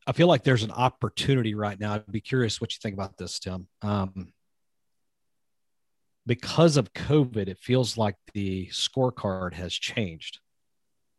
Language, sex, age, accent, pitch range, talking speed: English, male, 40-59, American, 100-120 Hz, 150 wpm